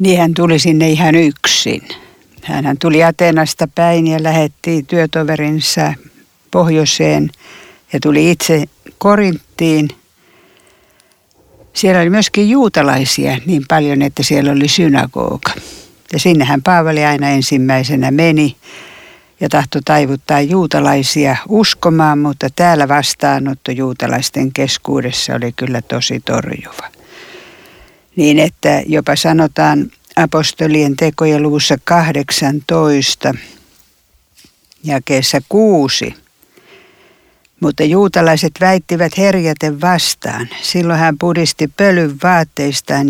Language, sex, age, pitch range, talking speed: Finnish, female, 60-79, 140-175 Hz, 95 wpm